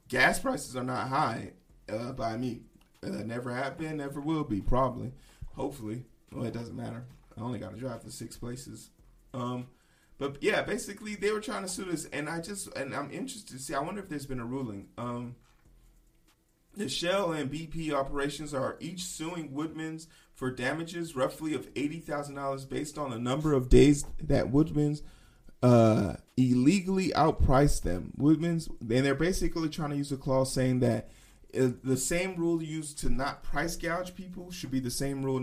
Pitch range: 125-150 Hz